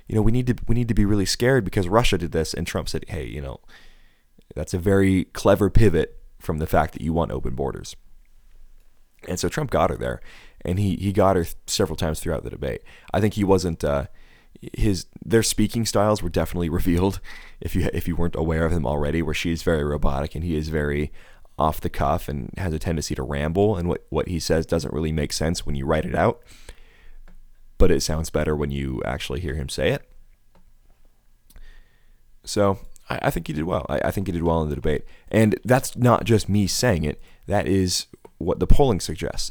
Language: English